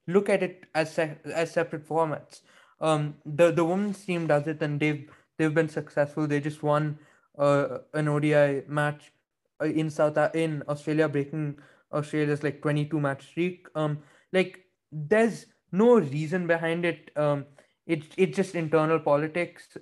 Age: 20-39